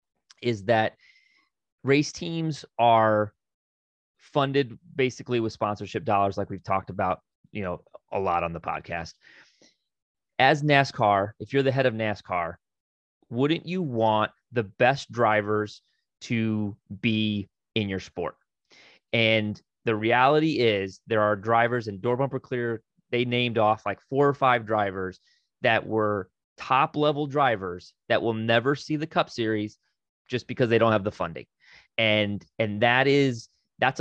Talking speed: 145 wpm